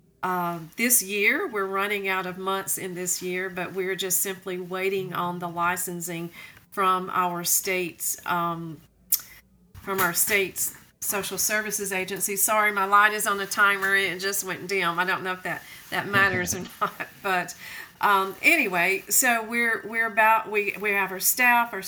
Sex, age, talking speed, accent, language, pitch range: female, 40-59, 175 wpm, American, English, 180-200 Hz